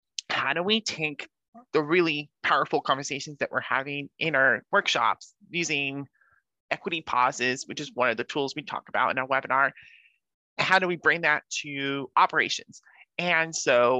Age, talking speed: 30-49, 165 wpm